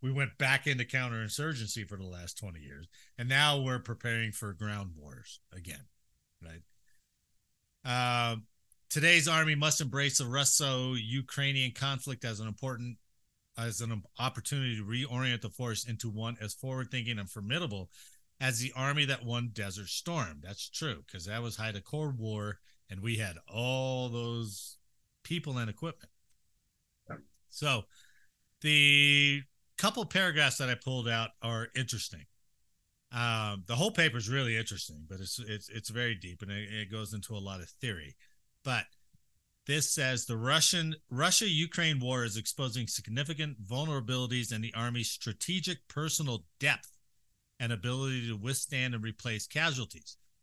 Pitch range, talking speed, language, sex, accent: 105-140 Hz, 140 wpm, English, male, American